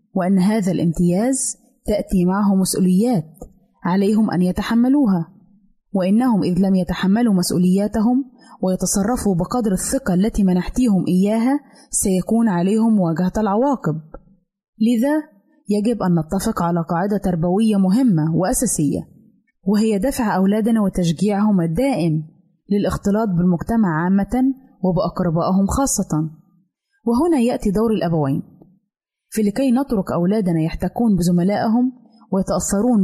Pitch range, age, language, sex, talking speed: 180-225 Hz, 20-39, Arabic, female, 95 wpm